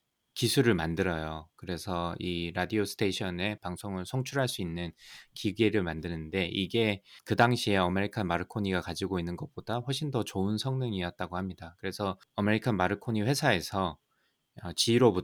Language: Korean